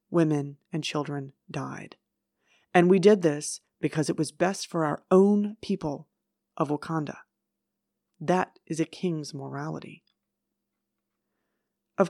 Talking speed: 120 wpm